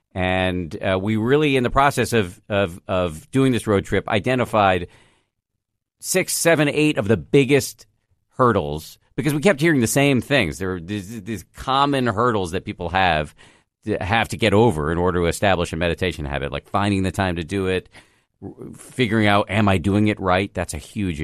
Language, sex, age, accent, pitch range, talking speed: English, male, 50-69, American, 90-115 Hz, 190 wpm